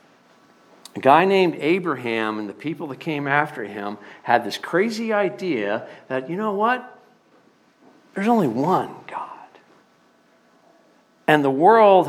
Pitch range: 130-200 Hz